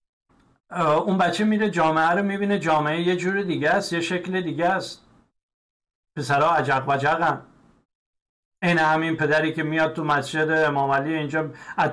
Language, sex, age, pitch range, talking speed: Persian, male, 60-79, 140-165 Hz, 145 wpm